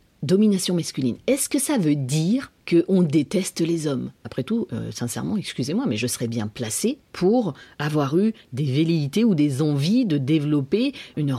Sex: female